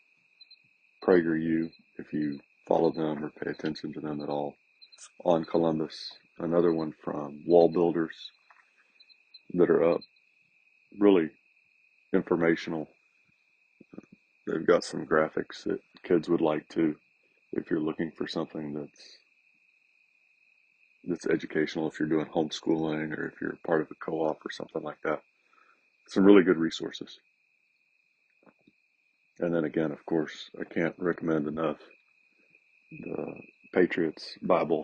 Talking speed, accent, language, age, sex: 125 wpm, American, English, 40-59, male